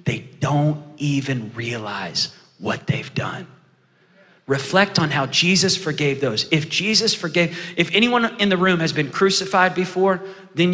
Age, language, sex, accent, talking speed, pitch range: 30-49, English, male, American, 145 wpm, 155-200 Hz